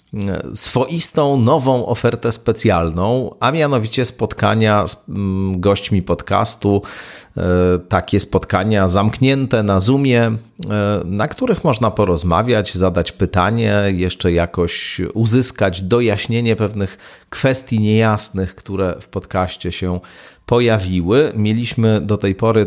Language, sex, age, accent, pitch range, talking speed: Polish, male, 40-59, native, 95-115 Hz, 100 wpm